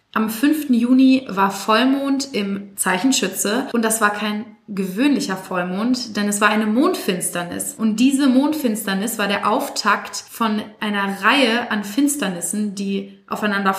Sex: female